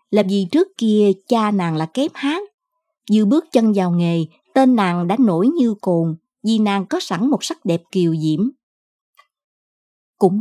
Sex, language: male, Vietnamese